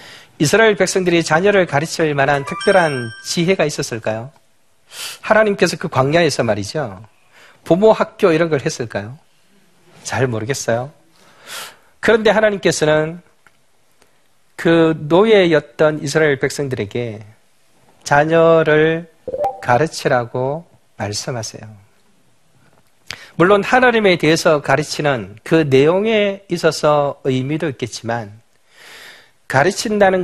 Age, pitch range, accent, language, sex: 40-59, 130-170 Hz, native, Korean, male